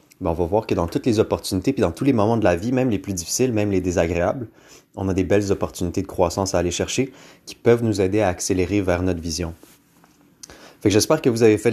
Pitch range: 90-110 Hz